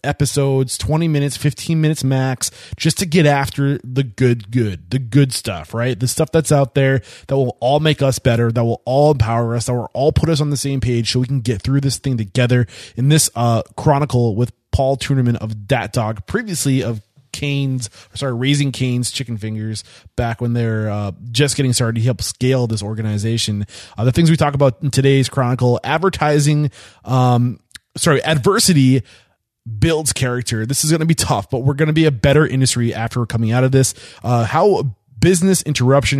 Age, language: 20-39, English